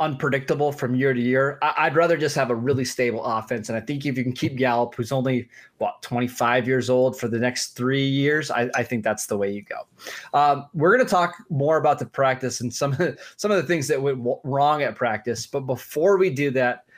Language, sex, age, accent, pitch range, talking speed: English, male, 20-39, American, 125-155 Hz, 230 wpm